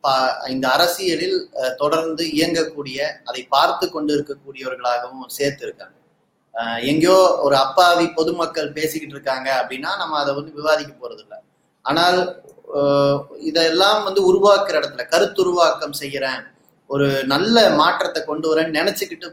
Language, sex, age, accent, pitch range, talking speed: Tamil, male, 20-39, native, 145-215 Hz, 115 wpm